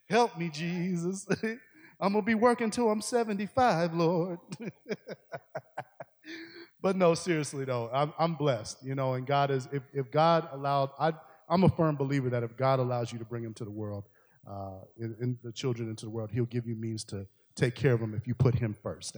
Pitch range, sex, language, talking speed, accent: 125-160 Hz, male, English, 200 wpm, American